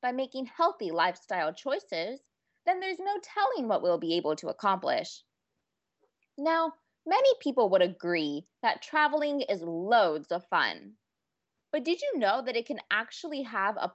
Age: 20-39